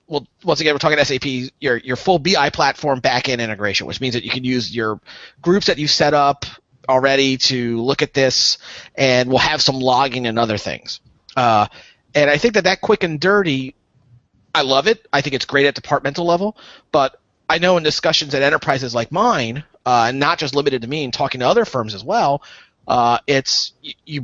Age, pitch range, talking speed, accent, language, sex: 30-49, 125-155 Hz, 205 wpm, American, English, male